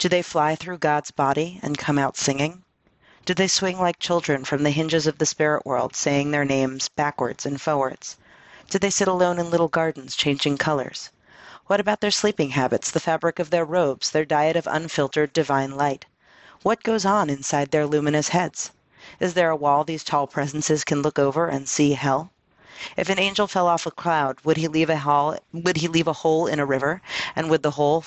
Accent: American